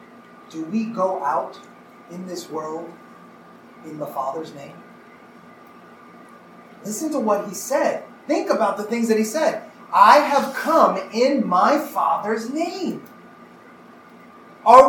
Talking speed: 125 wpm